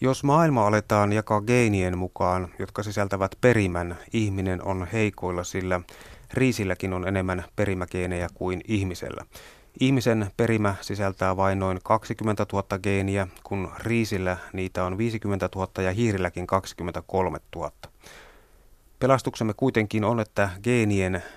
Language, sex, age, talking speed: Finnish, male, 30-49, 120 wpm